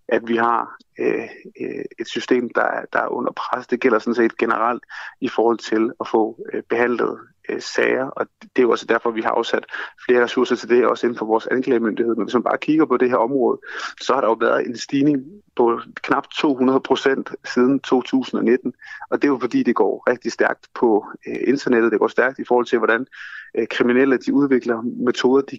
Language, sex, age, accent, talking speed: Danish, male, 30-49, native, 215 wpm